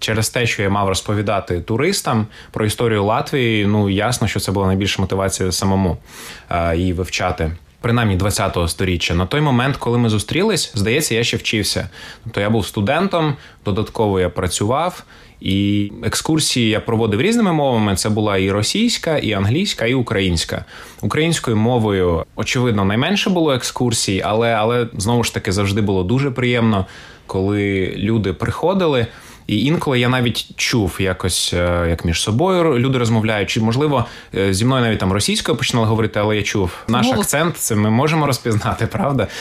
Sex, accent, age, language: male, native, 20-39, Ukrainian